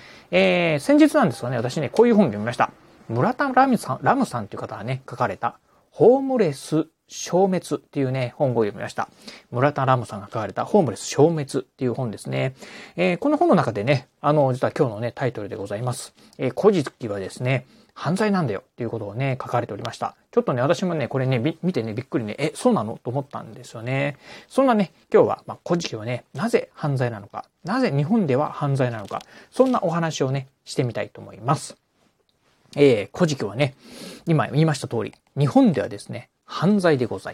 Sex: male